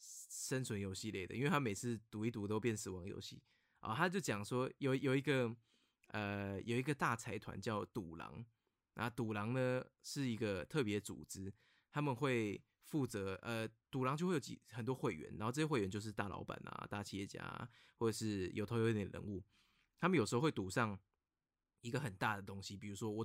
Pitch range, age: 100-125 Hz, 20-39